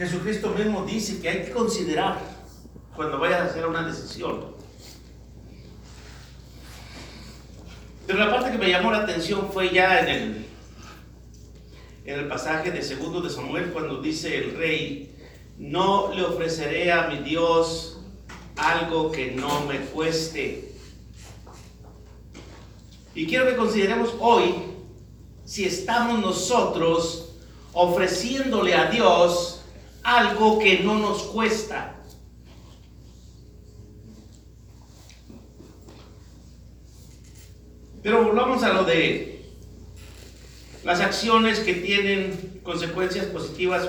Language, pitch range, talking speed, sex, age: Spanish, 160-210 Hz, 100 wpm, male, 50-69